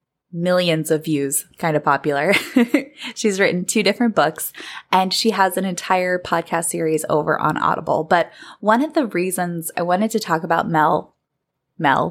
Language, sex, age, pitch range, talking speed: English, female, 20-39, 165-220 Hz, 165 wpm